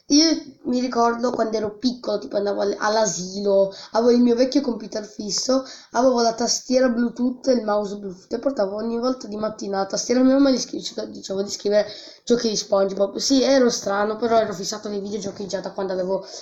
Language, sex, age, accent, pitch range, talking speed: Italian, female, 20-39, native, 200-260 Hz, 185 wpm